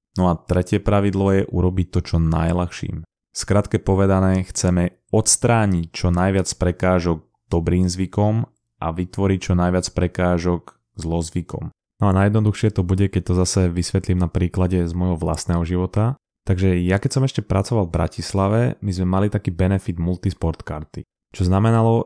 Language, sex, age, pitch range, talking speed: Slovak, male, 20-39, 90-105 Hz, 150 wpm